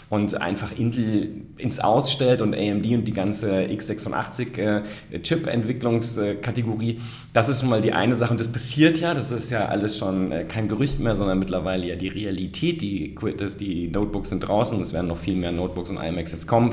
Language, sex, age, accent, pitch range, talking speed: German, male, 30-49, German, 100-125 Hz, 185 wpm